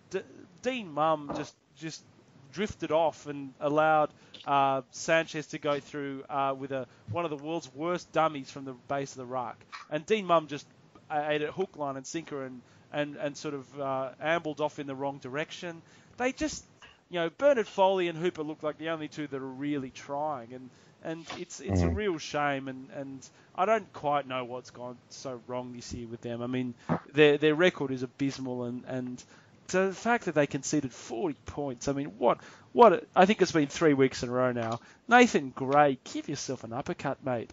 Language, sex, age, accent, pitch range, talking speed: English, male, 30-49, Australian, 130-165 Hz, 205 wpm